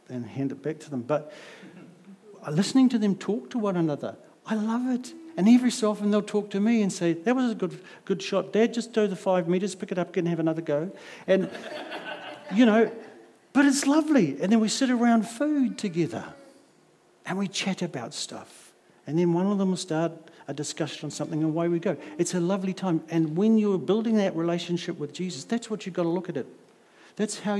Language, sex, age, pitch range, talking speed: English, male, 60-79, 170-220 Hz, 220 wpm